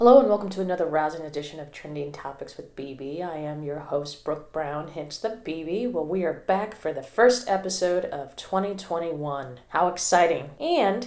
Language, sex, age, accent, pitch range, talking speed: English, female, 30-49, American, 150-190 Hz, 185 wpm